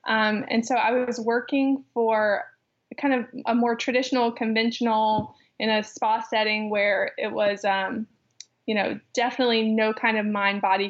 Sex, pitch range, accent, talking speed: female, 210-240 Hz, American, 165 wpm